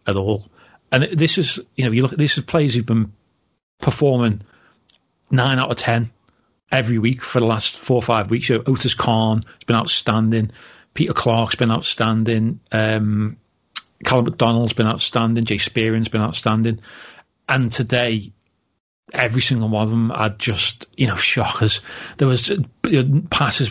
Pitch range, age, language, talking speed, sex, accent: 115-140 Hz, 40-59, English, 165 wpm, male, British